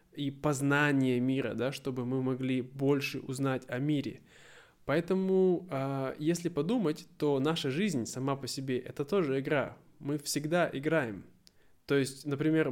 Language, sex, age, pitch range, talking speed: Russian, male, 20-39, 135-155 Hz, 135 wpm